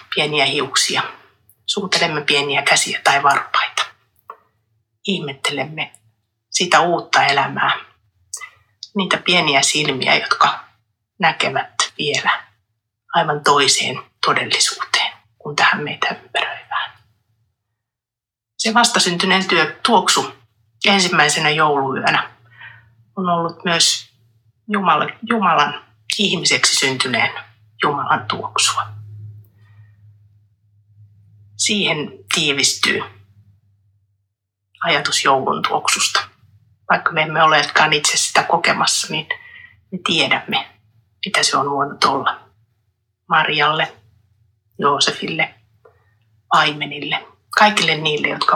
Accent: native